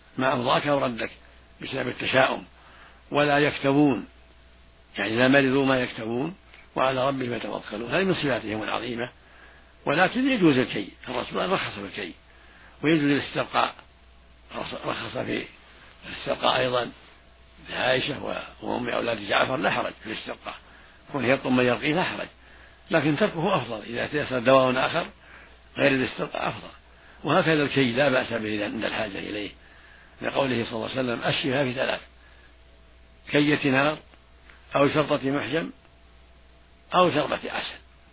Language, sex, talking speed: Arabic, male, 125 wpm